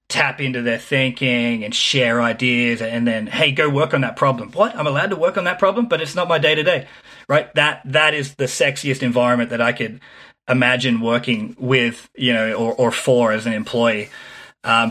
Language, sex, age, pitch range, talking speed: English, male, 30-49, 120-135 Hz, 200 wpm